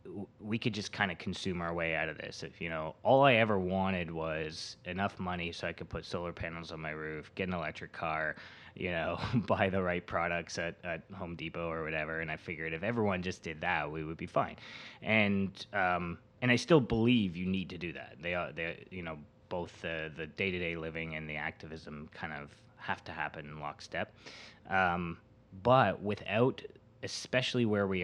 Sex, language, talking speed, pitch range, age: male, English, 200 wpm, 80-105 Hz, 20-39